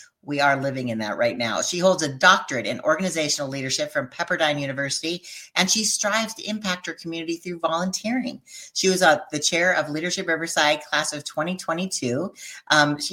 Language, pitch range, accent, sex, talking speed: English, 145-185 Hz, American, female, 170 wpm